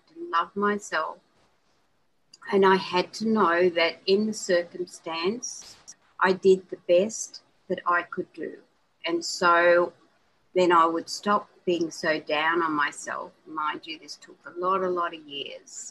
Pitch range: 175-215 Hz